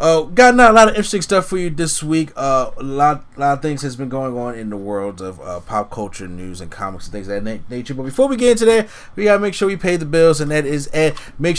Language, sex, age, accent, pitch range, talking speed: English, male, 20-39, American, 125-160 Hz, 295 wpm